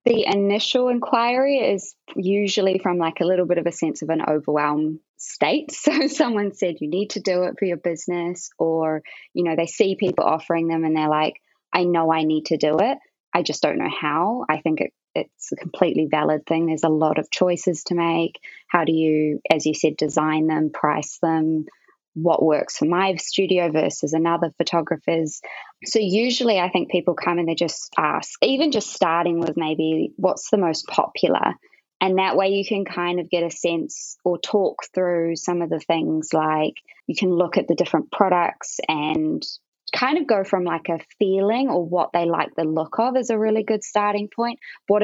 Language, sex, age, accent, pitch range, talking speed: English, female, 20-39, Australian, 160-200 Hz, 200 wpm